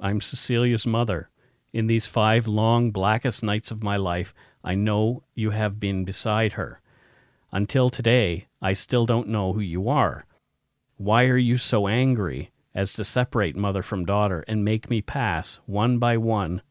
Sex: male